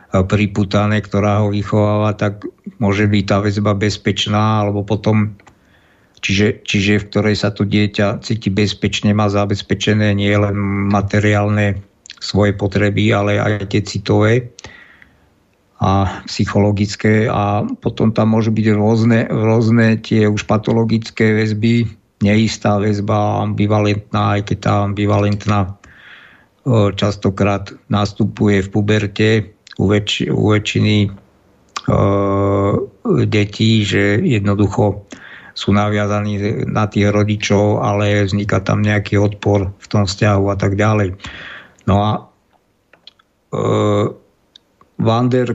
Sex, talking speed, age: male, 105 wpm, 50-69